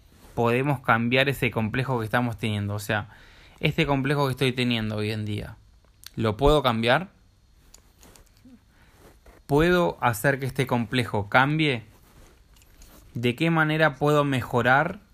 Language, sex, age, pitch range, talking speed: Spanish, male, 20-39, 100-130 Hz, 125 wpm